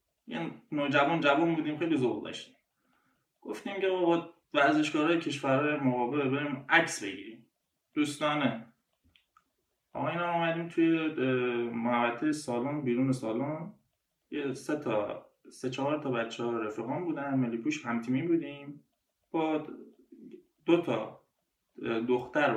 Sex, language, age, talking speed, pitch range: male, Persian, 20-39, 110 wpm, 120-160 Hz